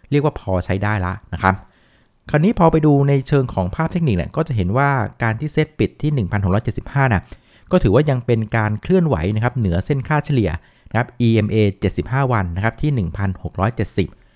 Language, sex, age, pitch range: Thai, male, 60-79, 100-140 Hz